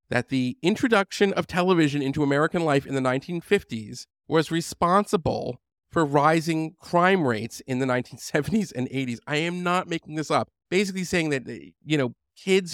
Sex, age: male, 40-59